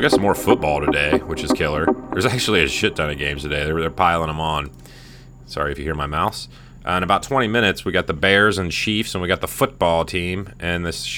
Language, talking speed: English, 245 wpm